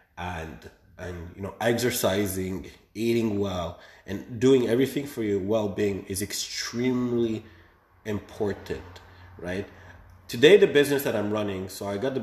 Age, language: 30-49, English